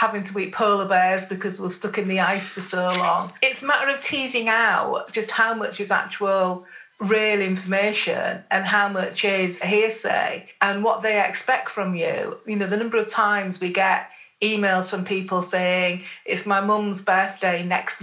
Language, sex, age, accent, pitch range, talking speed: English, female, 40-59, British, 185-215 Hz, 185 wpm